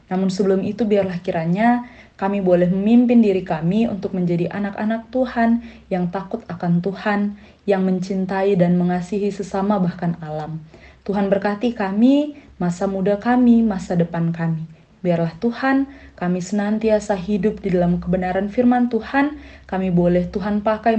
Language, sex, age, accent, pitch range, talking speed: Indonesian, female, 20-39, native, 175-215 Hz, 135 wpm